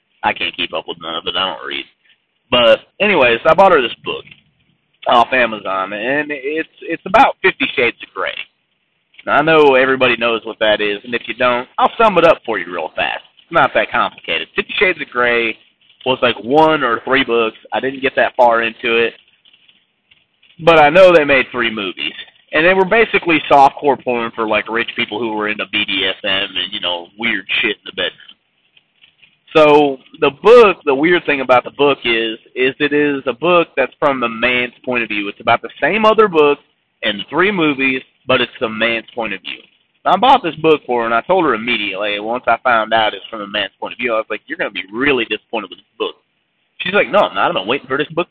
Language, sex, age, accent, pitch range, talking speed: English, male, 30-49, American, 115-180 Hz, 225 wpm